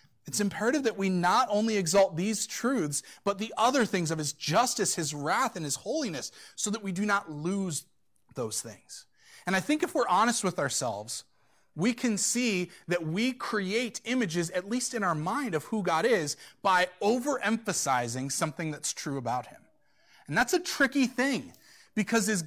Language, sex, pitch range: English, male, 180-255 Hz